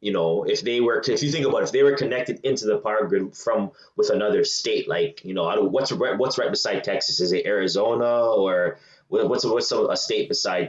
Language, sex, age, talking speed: English, male, 20-39, 225 wpm